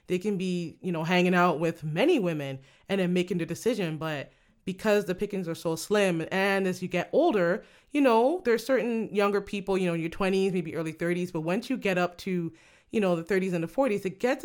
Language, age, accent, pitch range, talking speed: English, 20-39, American, 170-200 Hz, 235 wpm